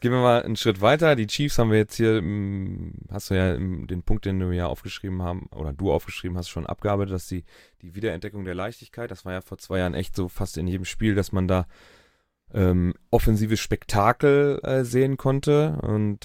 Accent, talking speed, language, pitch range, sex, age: German, 205 wpm, German, 95-115 Hz, male, 30-49